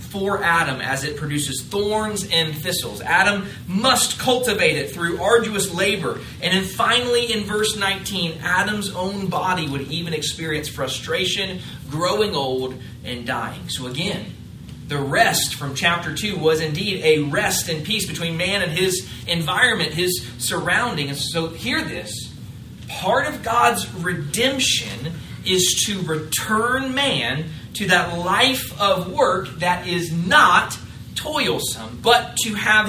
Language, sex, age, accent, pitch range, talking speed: English, male, 30-49, American, 135-195 Hz, 135 wpm